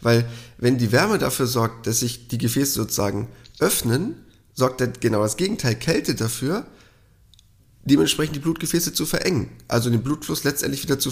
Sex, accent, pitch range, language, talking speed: male, German, 125-165 Hz, German, 160 wpm